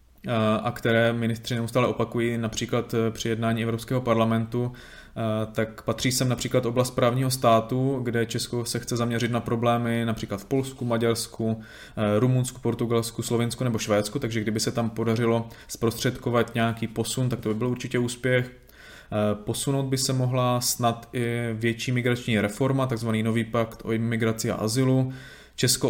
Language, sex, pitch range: Czech, male, 110-120 Hz